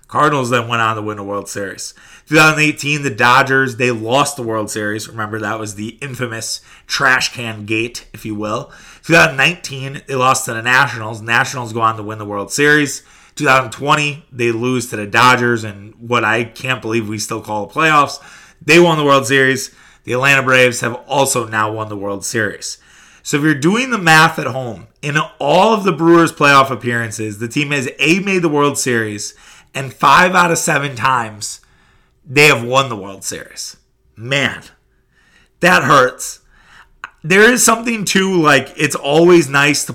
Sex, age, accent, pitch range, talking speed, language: male, 30-49, American, 120-155 Hz, 180 wpm, English